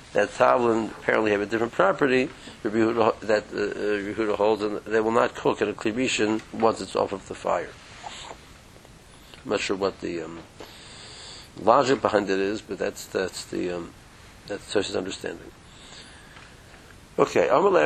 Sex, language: male, English